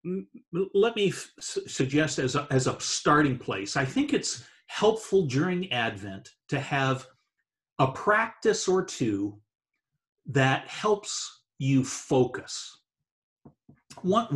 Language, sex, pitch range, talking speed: English, male, 130-185 Hz, 105 wpm